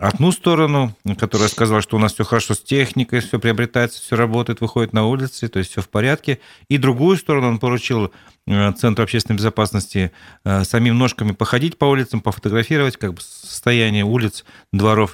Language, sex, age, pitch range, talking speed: Russian, male, 40-59, 105-125 Hz, 165 wpm